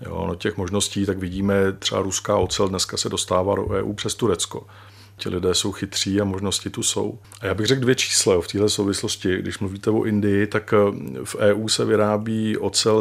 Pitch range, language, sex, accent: 95-105 Hz, Czech, male, native